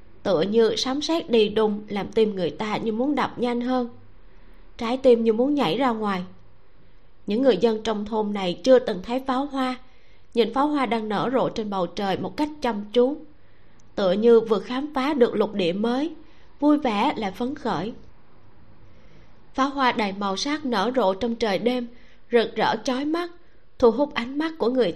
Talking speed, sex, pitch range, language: 190 wpm, female, 200-255 Hz, Vietnamese